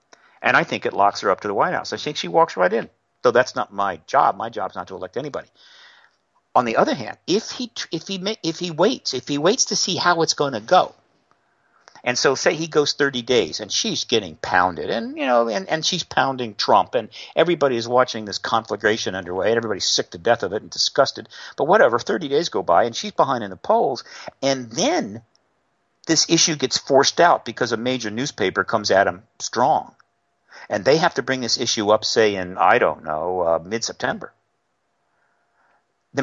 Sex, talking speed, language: male, 210 wpm, English